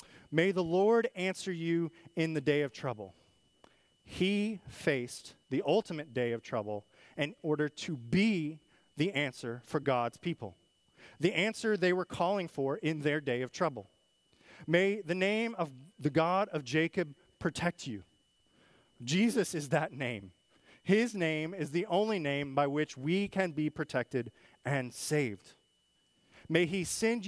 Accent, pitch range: American, 130-180 Hz